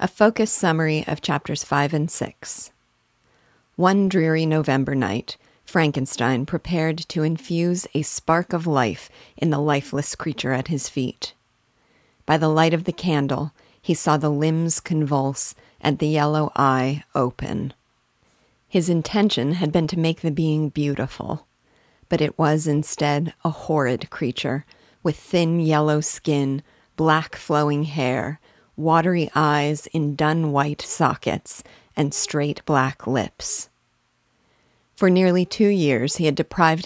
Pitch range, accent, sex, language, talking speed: 145-165 Hz, American, female, English, 135 wpm